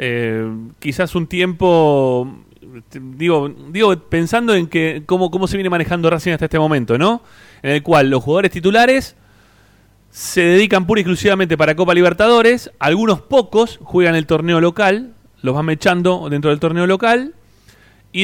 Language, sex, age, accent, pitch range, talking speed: Spanish, male, 30-49, Argentinian, 120-180 Hz, 150 wpm